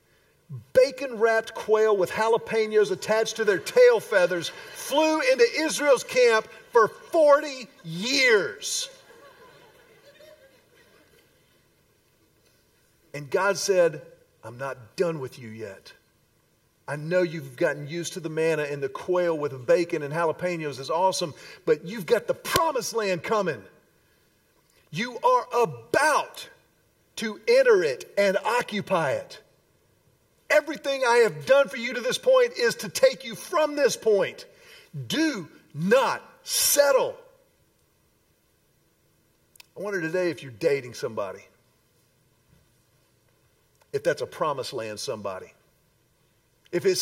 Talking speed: 115 wpm